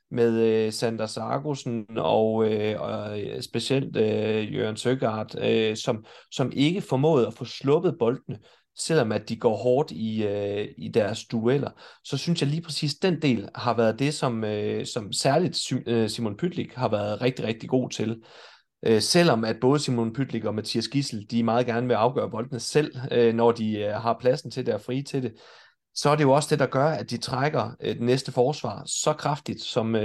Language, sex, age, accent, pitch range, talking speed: Danish, male, 30-49, native, 115-135 Hz, 170 wpm